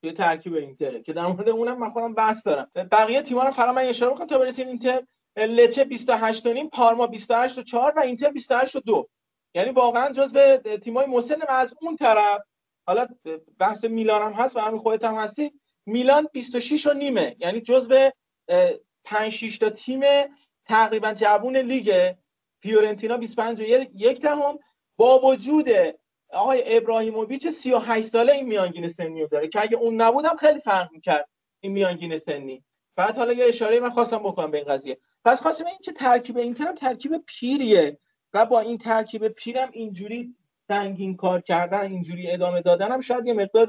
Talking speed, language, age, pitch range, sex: 160 wpm, Persian, 40-59, 210-260 Hz, male